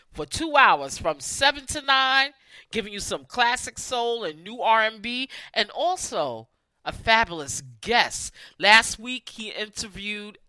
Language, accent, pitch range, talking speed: English, American, 175-255 Hz, 135 wpm